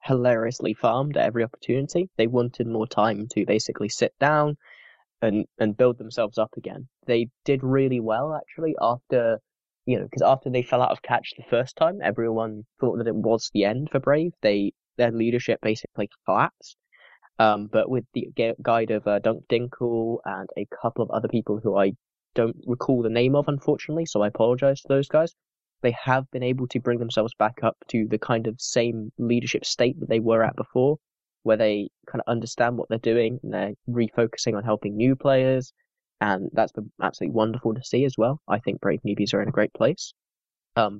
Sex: male